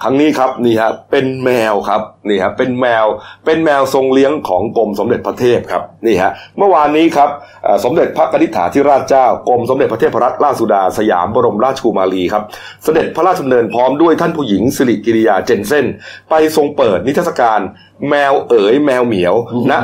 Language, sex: Thai, male